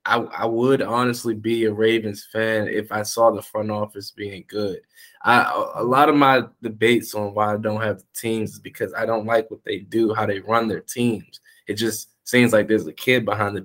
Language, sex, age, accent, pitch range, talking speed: English, male, 20-39, American, 110-125 Hz, 220 wpm